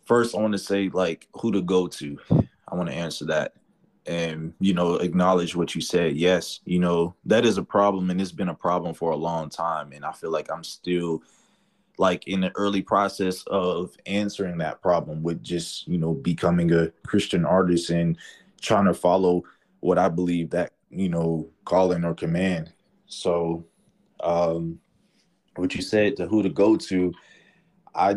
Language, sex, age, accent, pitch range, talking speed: English, male, 20-39, American, 85-100 Hz, 180 wpm